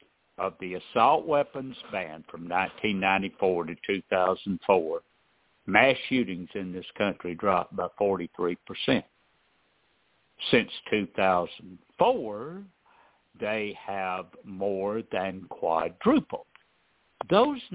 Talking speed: 85 wpm